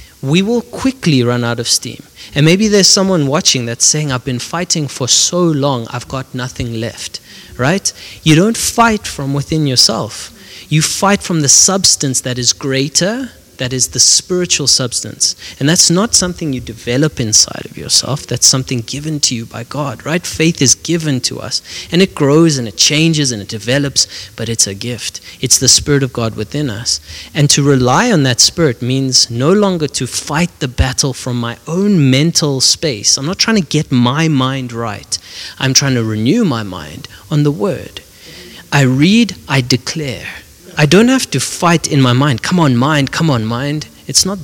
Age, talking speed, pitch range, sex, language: 30-49, 190 wpm, 115-155 Hz, male, English